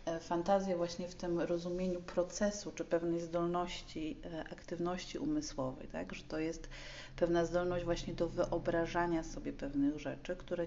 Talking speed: 135 wpm